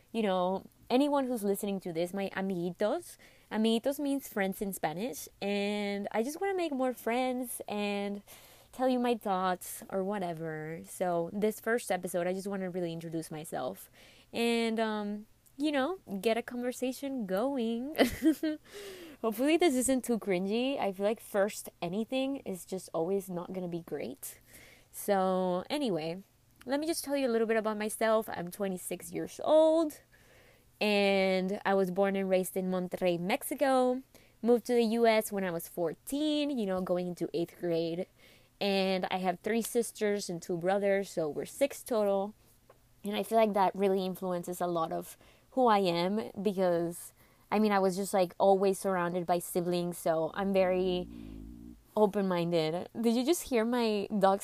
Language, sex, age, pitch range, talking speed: Spanish, female, 20-39, 180-235 Hz, 165 wpm